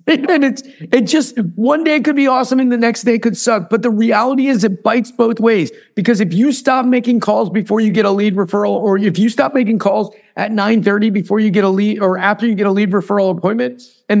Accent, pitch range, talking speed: American, 175-230 Hz, 245 wpm